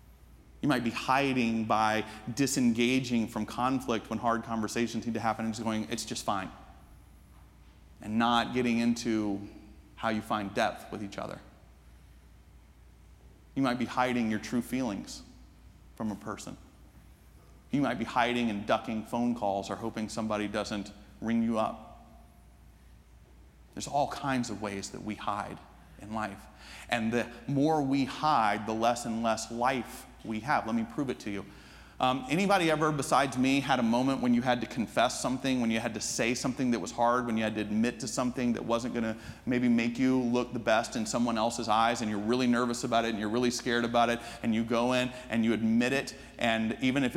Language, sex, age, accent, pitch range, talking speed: English, male, 30-49, American, 110-125 Hz, 190 wpm